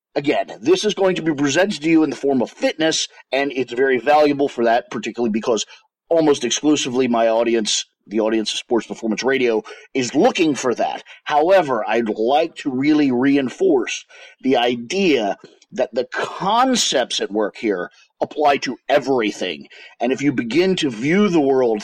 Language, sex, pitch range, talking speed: English, male, 120-170 Hz, 170 wpm